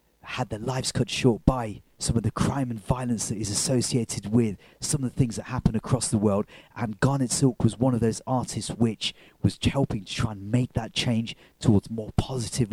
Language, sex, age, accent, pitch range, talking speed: English, male, 30-49, British, 105-125 Hz, 210 wpm